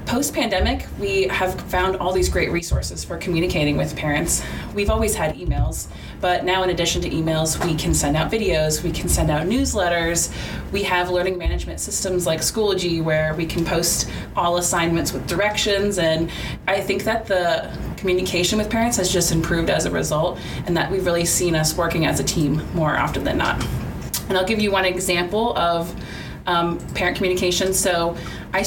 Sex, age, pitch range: female, 30-49, 165-190 Hz